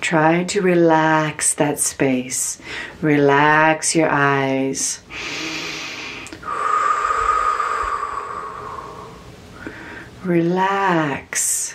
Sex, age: female, 40-59